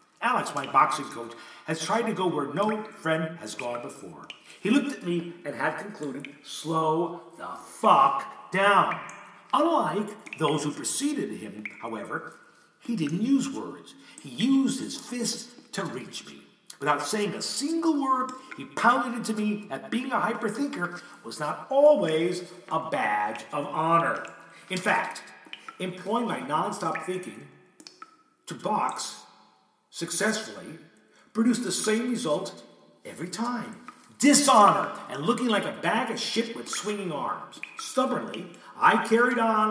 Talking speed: 140 wpm